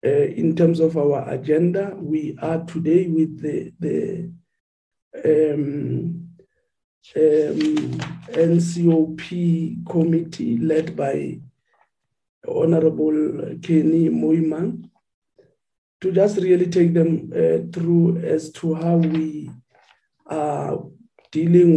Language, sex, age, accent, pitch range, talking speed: English, male, 50-69, South African, 150-170 Hz, 95 wpm